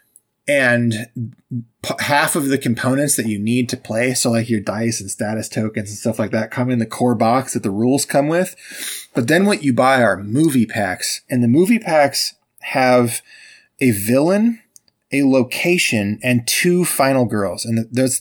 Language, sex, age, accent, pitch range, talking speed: English, male, 20-39, American, 115-140 Hz, 180 wpm